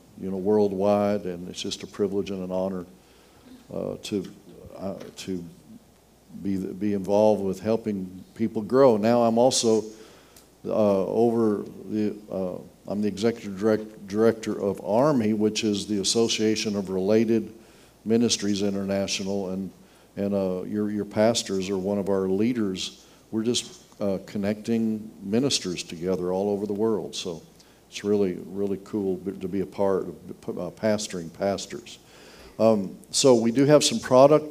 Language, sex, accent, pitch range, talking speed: English, male, American, 100-115 Hz, 150 wpm